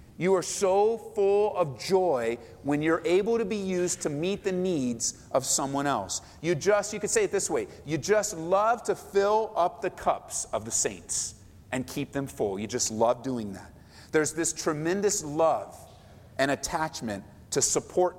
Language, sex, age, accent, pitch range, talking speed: English, male, 40-59, American, 155-230 Hz, 180 wpm